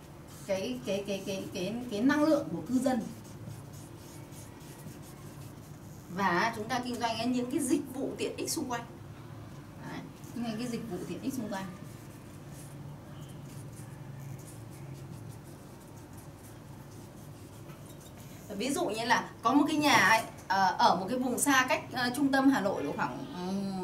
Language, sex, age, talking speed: Vietnamese, female, 20-39, 145 wpm